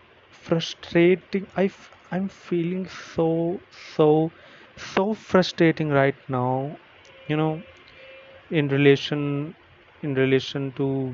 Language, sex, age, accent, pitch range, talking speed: English, male, 30-49, Indian, 135-160 Hz, 90 wpm